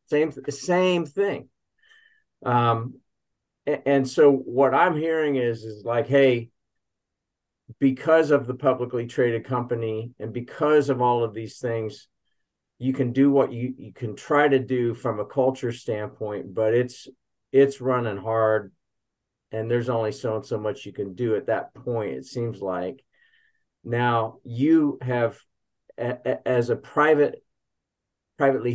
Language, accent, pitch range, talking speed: English, American, 115-135 Hz, 150 wpm